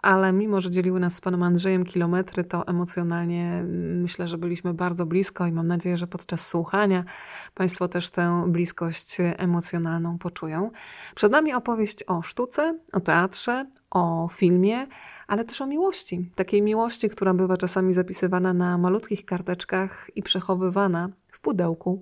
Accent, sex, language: native, female, Polish